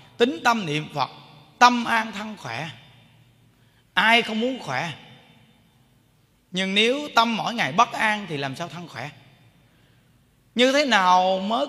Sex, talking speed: male, 145 wpm